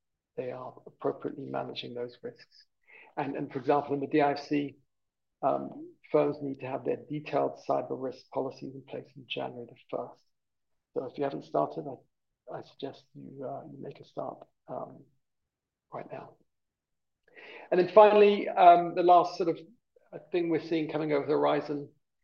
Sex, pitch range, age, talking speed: male, 135-155 Hz, 50-69, 165 wpm